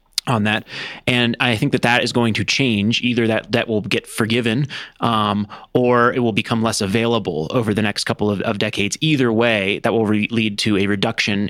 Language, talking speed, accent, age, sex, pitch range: English, 210 wpm, American, 30-49, male, 105-120 Hz